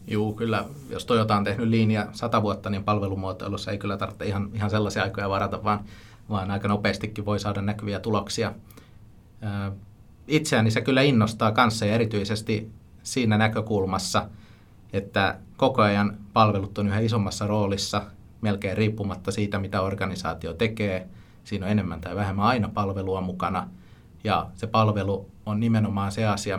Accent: native